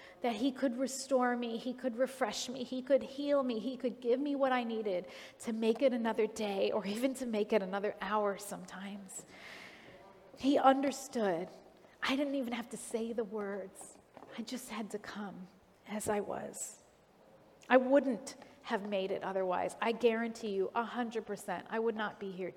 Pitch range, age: 200-265 Hz, 40-59